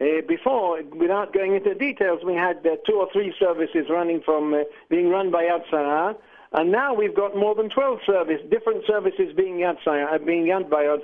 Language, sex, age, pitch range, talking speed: English, male, 60-79, 170-220 Hz, 190 wpm